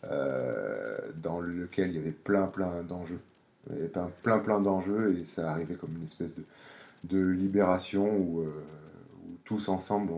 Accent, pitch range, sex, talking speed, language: French, 85-105 Hz, male, 175 wpm, French